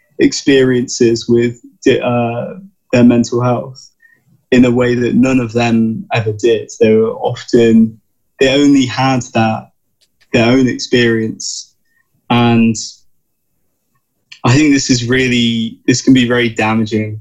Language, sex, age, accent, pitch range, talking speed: English, male, 20-39, British, 110-130 Hz, 125 wpm